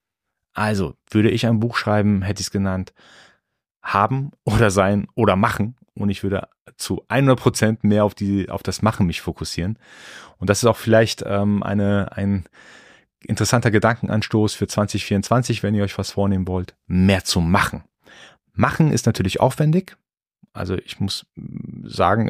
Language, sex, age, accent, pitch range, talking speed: German, male, 30-49, German, 95-115 Hz, 155 wpm